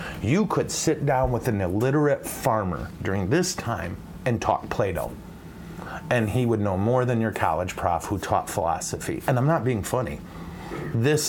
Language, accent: English, American